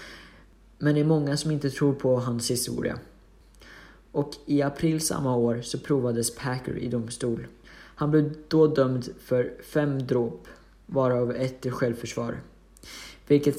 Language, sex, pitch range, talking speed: Swedish, male, 125-150 Hz, 140 wpm